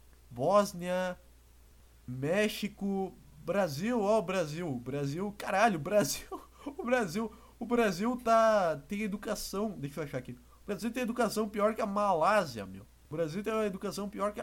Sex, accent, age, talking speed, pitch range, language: male, Brazilian, 20-39, 155 wpm, 145-210 Hz, Portuguese